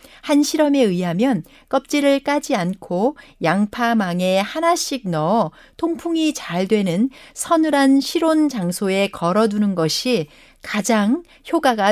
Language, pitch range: Korean, 190-270 Hz